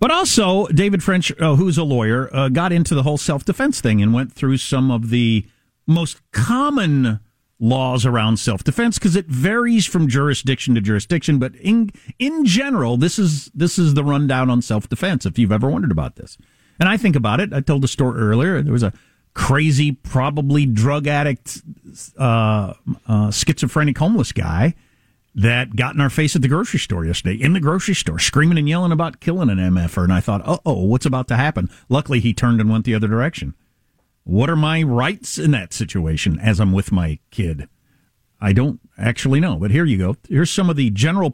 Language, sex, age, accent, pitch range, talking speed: English, male, 50-69, American, 115-165 Hz, 200 wpm